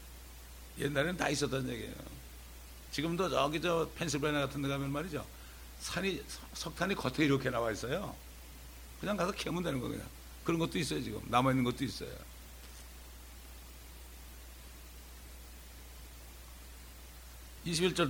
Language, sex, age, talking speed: English, male, 60-79, 105 wpm